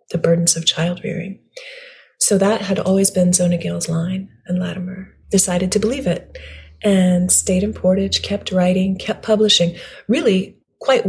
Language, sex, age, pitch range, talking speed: English, female, 30-49, 180-205 Hz, 155 wpm